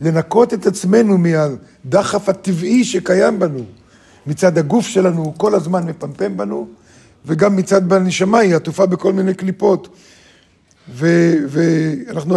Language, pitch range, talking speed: Hebrew, 155-205 Hz, 115 wpm